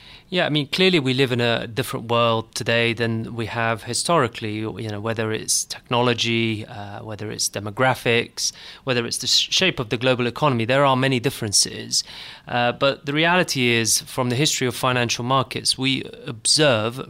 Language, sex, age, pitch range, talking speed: English, male, 30-49, 115-140 Hz, 170 wpm